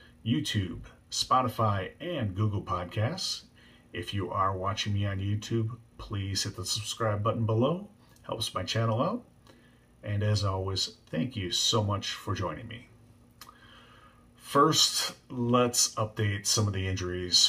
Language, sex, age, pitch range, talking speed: English, male, 30-49, 100-115 Hz, 135 wpm